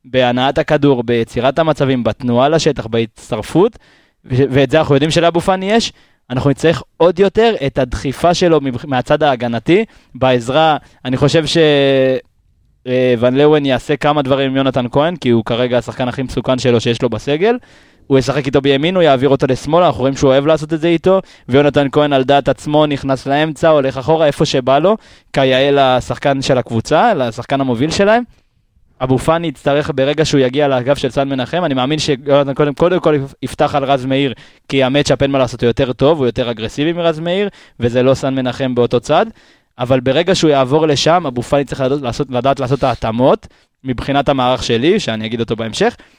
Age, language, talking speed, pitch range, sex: 20-39, Hebrew, 170 wpm, 125-155 Hz, male